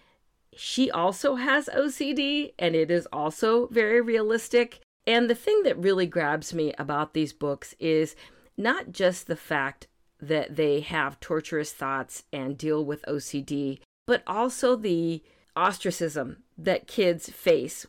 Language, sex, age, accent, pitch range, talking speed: English, female, 40-59, American, 150-200 Hz, 140 wpm